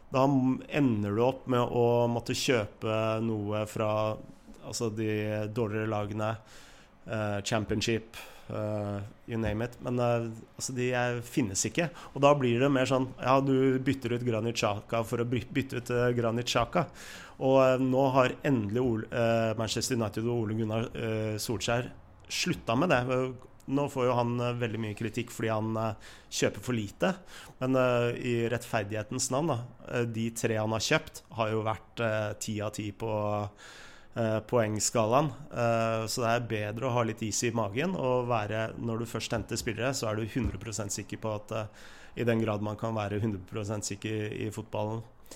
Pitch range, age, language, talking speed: 110-125 Hz, 30-49, English, 175 wpm